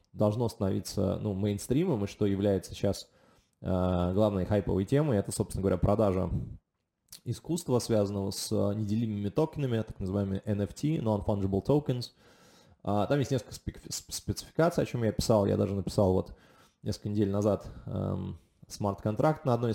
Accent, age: native, 20-39